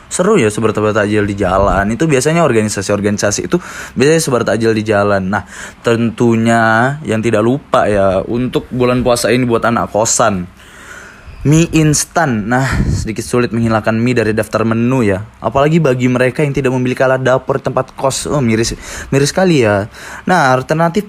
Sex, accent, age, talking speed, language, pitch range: male, native, 20-39, 155 wpm, Indonesian, 105-140 Hz